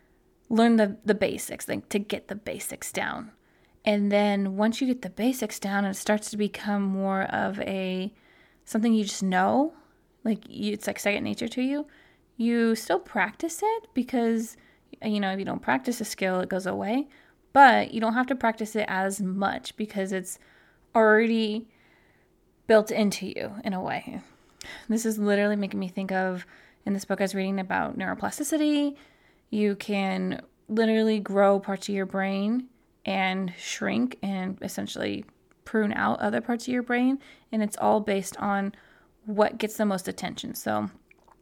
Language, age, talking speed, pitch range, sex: English, 20-39, 170 wpm, 195-225 Hz, female